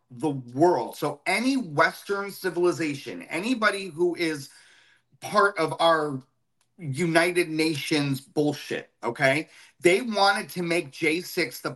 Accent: American